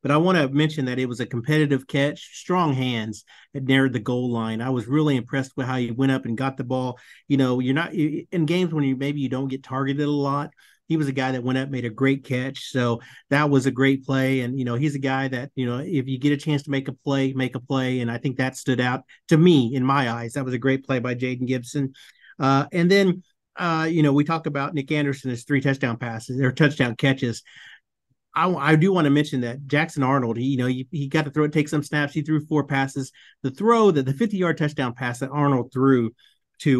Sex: male